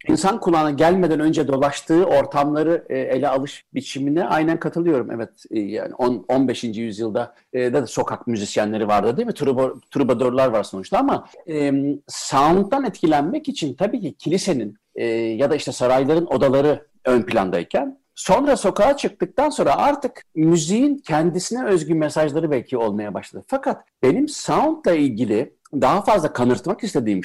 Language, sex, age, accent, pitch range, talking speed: Turkish, male, 60-79, native, 135-205 Hz, 135 wpm